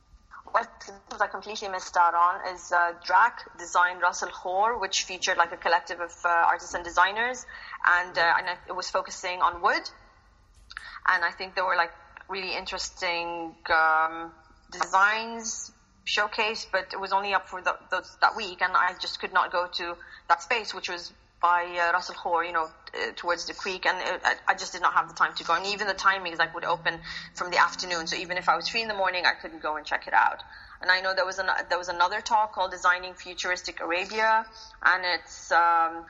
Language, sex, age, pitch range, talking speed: English, female, 20-39, 175-210 Hz, 210 wpm